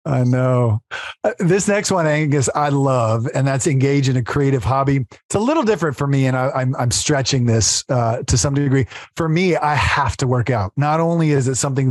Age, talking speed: 40-59, 215 wpm